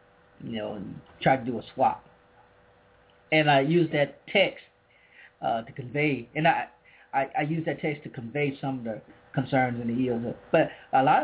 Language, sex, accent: English, male, American